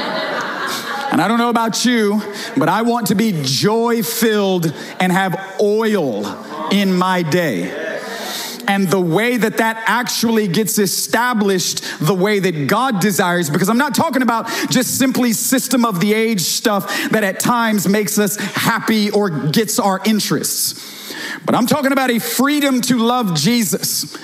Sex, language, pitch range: male, English, 200-240 Hz